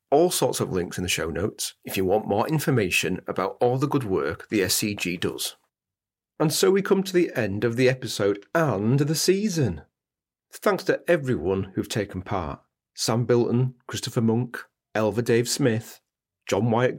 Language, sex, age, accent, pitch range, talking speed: English, male, 40-59, British, 105-135 Hz, 175 wpm